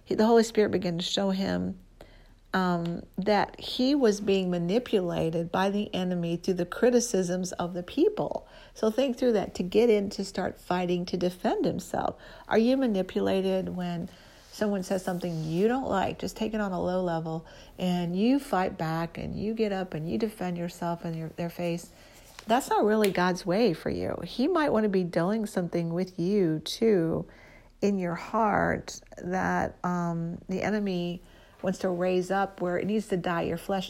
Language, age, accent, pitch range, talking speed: English, 50-69, American, 170-205 Hz, 180 wpm